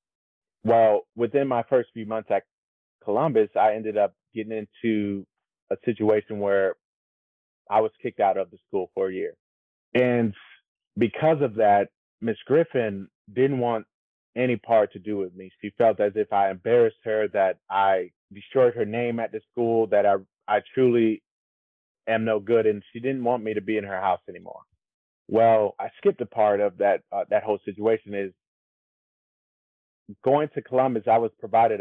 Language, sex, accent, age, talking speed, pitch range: English, male, American, 30-49, 170 wpm, 105-130 Hz